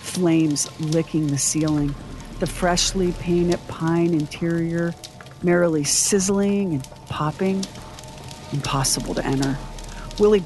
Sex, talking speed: female, 100 wpm